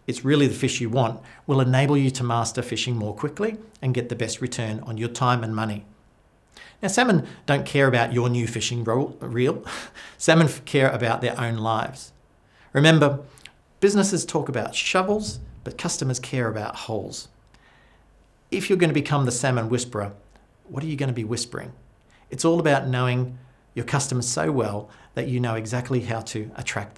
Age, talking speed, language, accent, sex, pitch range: 50-69, 175 wpm, English, Australian, male, 115-145 Hz